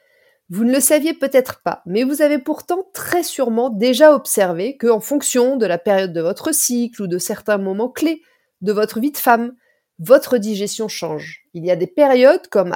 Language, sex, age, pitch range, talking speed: French, female, 30-49, 205-280 Hz, 195 wpm